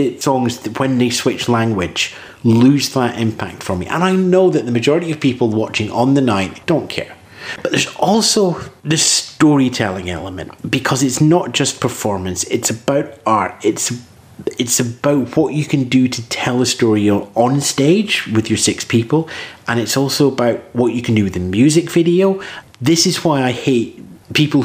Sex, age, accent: male, 30-49, British